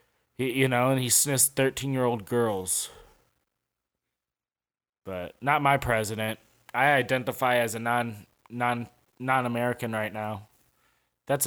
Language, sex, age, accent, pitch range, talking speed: English, male, 20-39, American, 110-130 Hz, 100 wpm